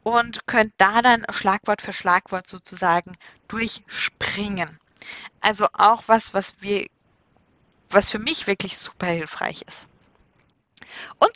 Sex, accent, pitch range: female, German, 200-255 Hz